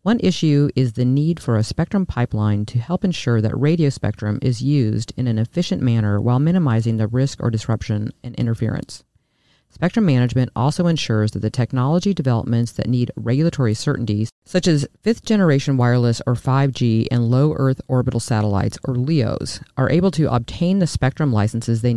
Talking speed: 165 wpm